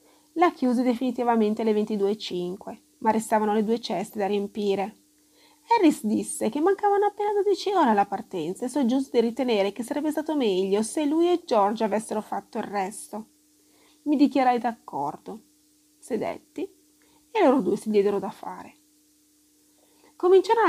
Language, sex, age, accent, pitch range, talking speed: Italian, female, 30-49, native, 210-300 Hz, 145 wpm